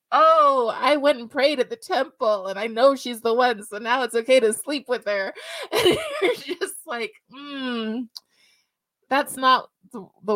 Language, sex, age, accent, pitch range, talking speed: English, female, 20-39, American, 185-230 Hz, 180 wpm